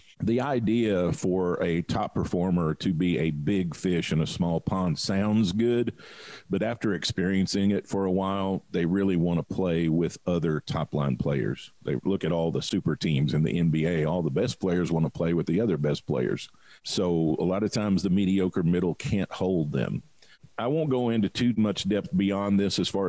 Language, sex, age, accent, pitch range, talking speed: English, male, 50-69, American, 90-110 Hz, 205 wpm